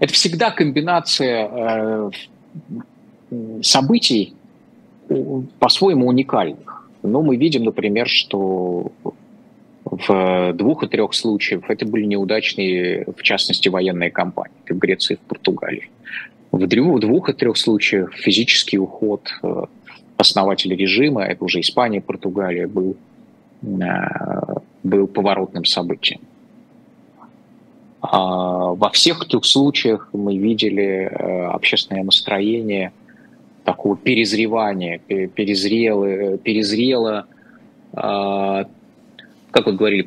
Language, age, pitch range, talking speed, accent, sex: Russian, 20-39, 95-125 Hz, 95 wpm, native, male